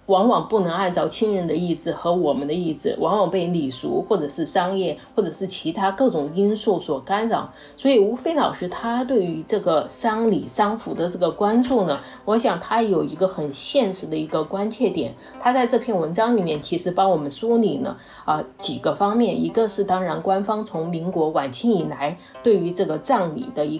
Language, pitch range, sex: Chinese, 165-225 Hz, female